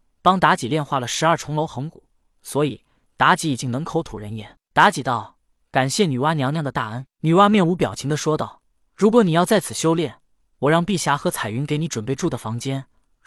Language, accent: Chinese, native